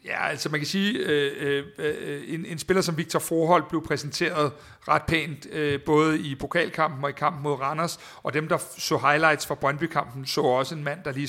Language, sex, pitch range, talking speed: Danish, male, 140-170 Hz, 205 wpm